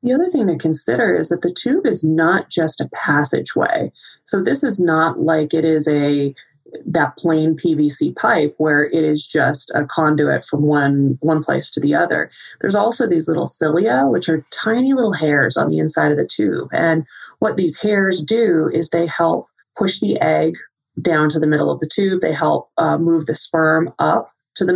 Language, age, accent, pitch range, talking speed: English, 30-49, American, 150-175 Hz, 200 wpm